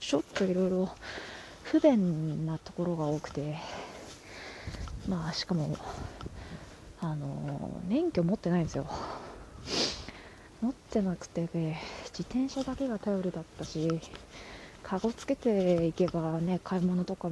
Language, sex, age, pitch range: Japanese, female, 20-39, 155-195 Hz